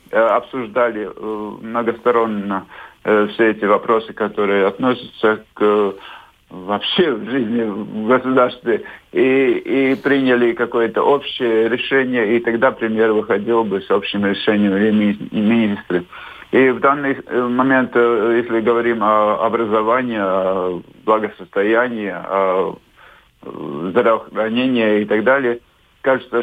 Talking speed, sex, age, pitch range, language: 100 wpm, male, 50-69, 110-130 Hz, Russian